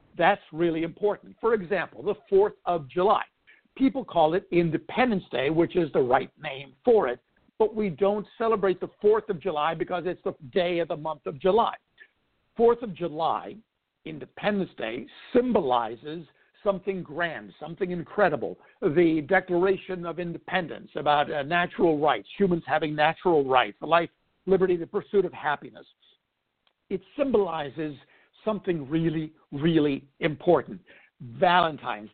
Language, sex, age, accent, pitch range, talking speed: English, male, 60-79, American, 160-205 Hz, 140 wpm